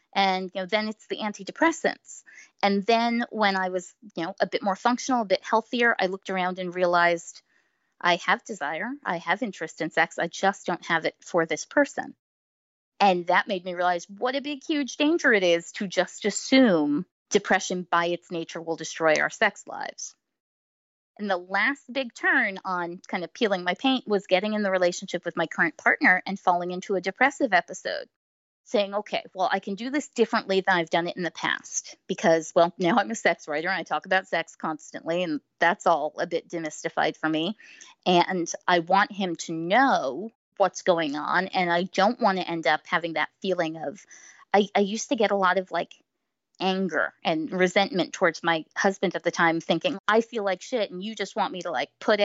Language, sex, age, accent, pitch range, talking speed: English, female, 20-39, American, 170-215 Hz, 205 wpm